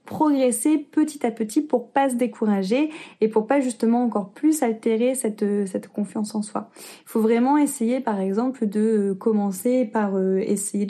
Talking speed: 180 wpm